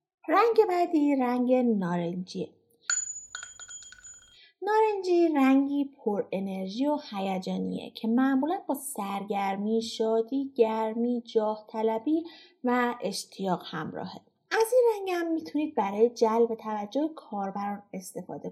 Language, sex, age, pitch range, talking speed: Persian, female, 30-49, 225-315 Hz, 95 wpm